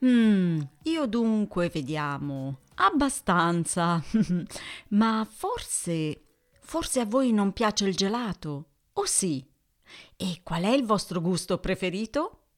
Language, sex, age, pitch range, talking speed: Italian, female, 40-59, 165-235 Hz, 110 wpm